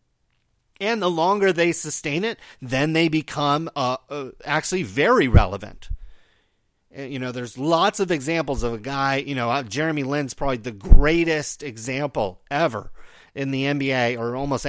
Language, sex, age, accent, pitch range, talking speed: English, male, 40-59, American, 130-180 Hz, 150 wpm